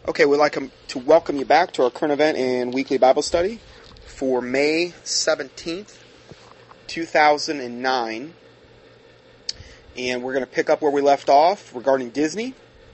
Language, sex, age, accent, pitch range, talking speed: English, male, 30-49, American, 130-190 Hz, 145 wpm